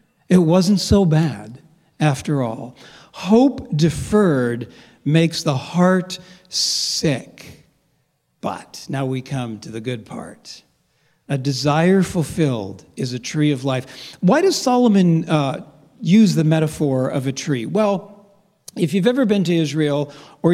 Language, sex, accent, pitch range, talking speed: English, male, American, 135-180 Hz, 135 wpm